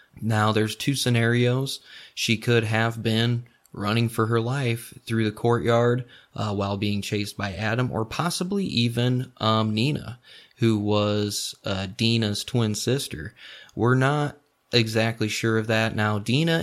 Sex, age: male, 20-39